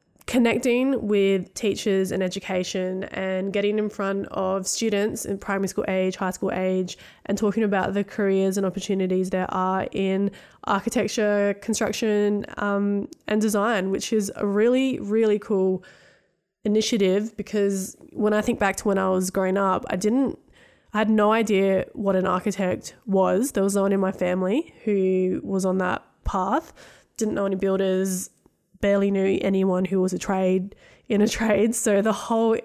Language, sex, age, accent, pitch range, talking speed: English, female, 20-39, Australian, 190-225 Hz, 165 wpm